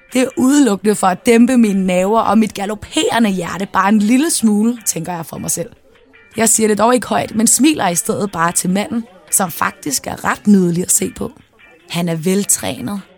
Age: 20-39